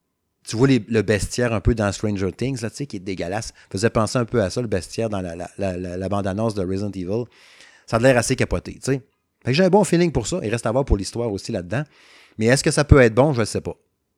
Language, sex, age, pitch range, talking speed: French, male, 30-49, 100-130 Hz, 280 wpm